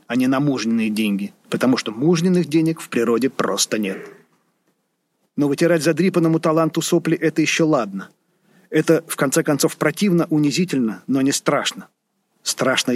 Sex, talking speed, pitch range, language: male, 145 wpm, 130-160 Hz, Russian